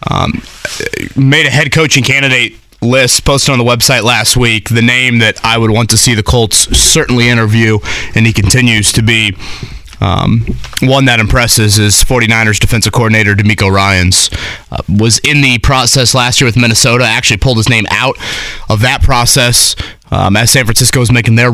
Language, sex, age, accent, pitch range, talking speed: English, male, 30-49, American, 105-130 Hz, 180 wpm